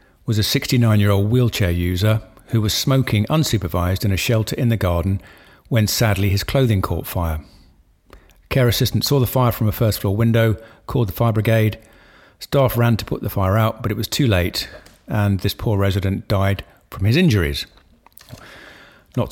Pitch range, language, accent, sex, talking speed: 95-120 Hz, English, British, male, 170 wpm